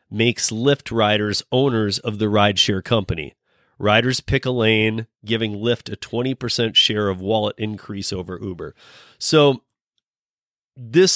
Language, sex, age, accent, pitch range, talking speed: English, male, 30-49, American, 105-130 Hz, 135 wpm